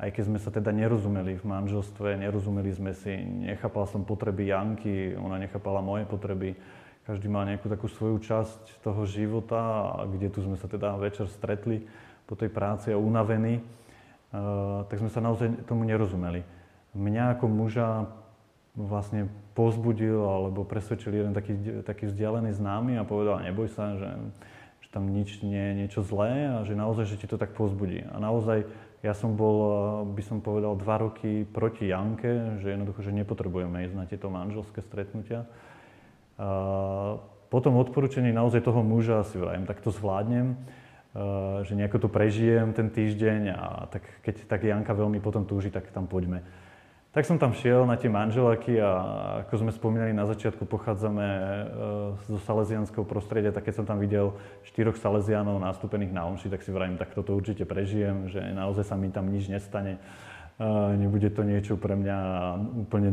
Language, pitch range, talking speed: Slovak, 100-110 Hz, 165 wpm